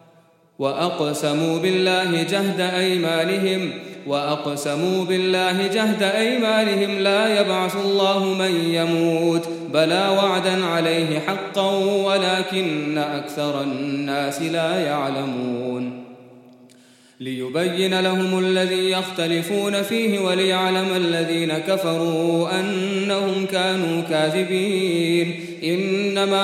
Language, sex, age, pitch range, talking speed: English, male, 30-49, 165-190 Hz, 75 wpm